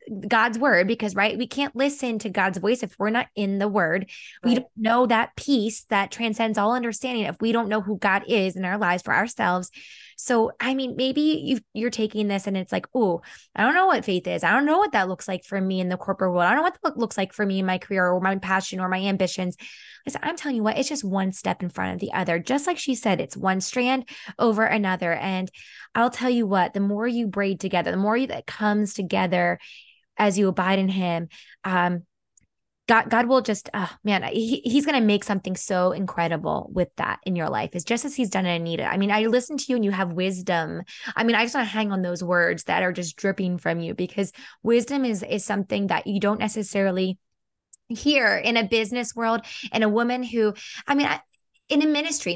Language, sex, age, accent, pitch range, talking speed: English, female, 10-29, American, 190-240 Hz, 235 wpm